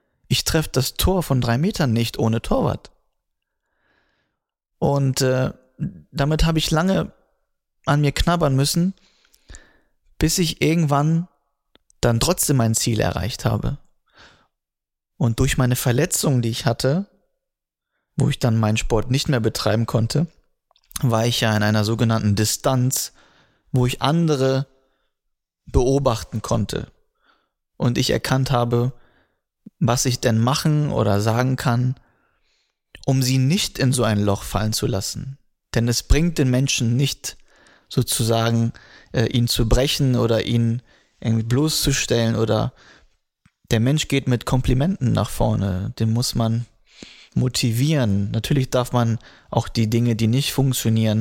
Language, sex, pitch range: German, male, 110-140 Hz